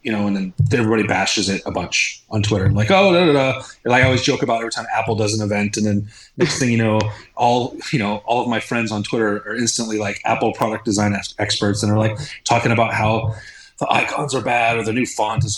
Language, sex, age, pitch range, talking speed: English, male, 30-49, 110-145 Hz, 250 wpm